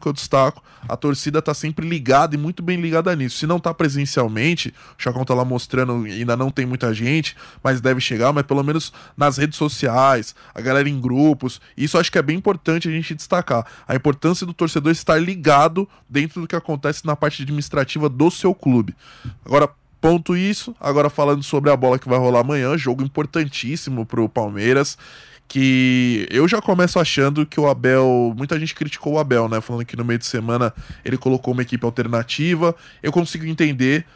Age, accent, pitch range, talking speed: 20-39, Brazilian, 125-155 Hz, 190 wpm